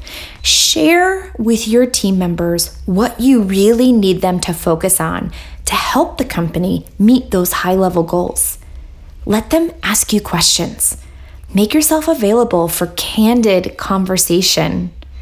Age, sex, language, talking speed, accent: 20-39, female, English, 125 wpm, American